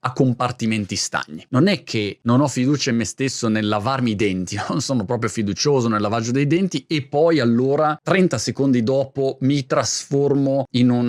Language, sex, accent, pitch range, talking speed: Italian, male, native, 110-145 Hz, 185 wpm